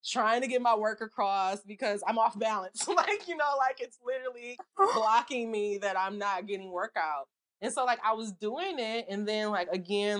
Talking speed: 205 wpm